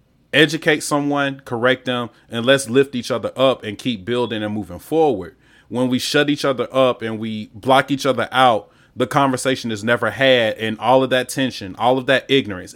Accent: American